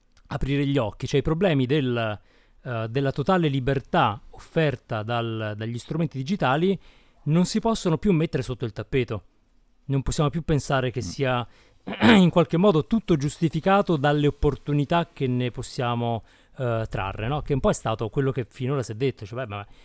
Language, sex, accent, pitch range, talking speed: Italian, male, native, 115-150 Hz, 170 wpm